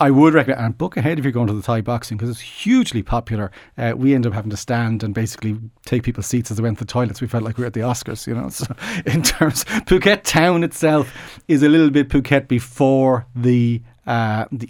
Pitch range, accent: 110-125 Hz, Irish